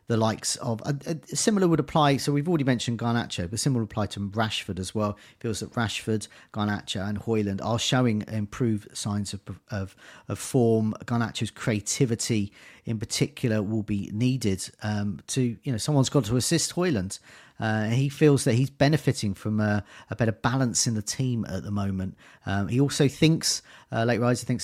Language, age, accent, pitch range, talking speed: English, 40-59, British, 105-135 Hz, 185 wpm